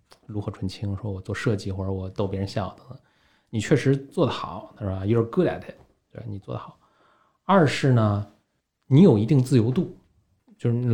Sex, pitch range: male, 100-125 Hz